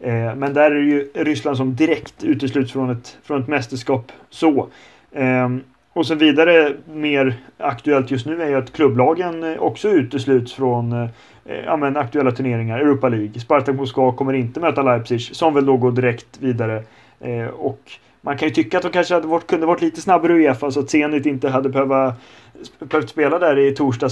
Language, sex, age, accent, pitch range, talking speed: Swedish, male, 30-49, native, 130-150 Hz, 185 wpm